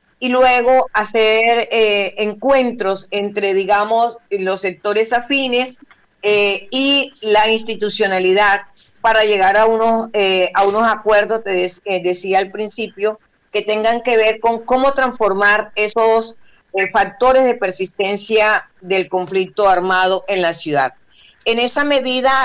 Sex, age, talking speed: female, 40-59, 130 wpm